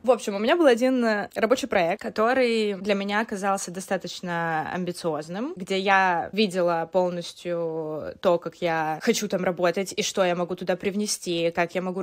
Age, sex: 20-39, female